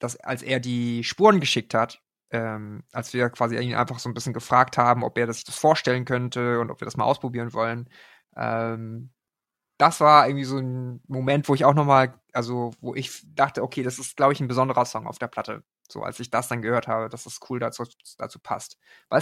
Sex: male